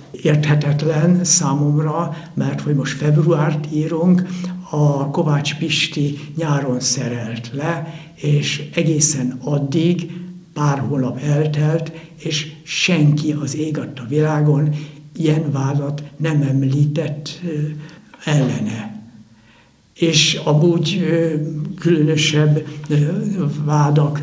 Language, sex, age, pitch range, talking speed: Hungarian, male, 60-79, 145-165 Hz, 85 wpm